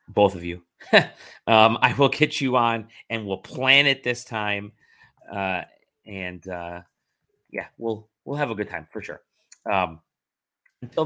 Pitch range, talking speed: 100-140 Hz, 155 wpm